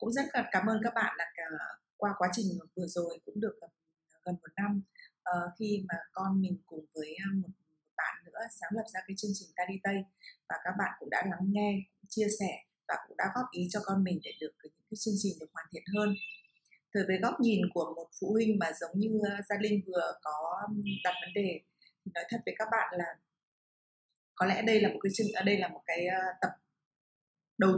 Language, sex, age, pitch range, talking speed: Vietnamese, female, 20-39, 175-215 Hz, 215 wpm